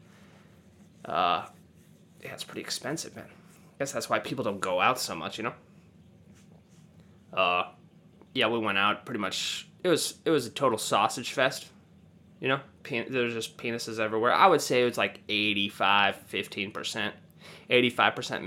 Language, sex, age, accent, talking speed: English, male, 20-39, American, 155 wpm